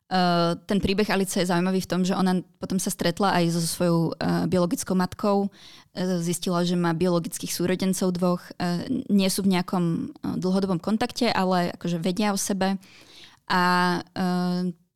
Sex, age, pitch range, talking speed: female, 20-39, 175-190 Hz, 165 wpm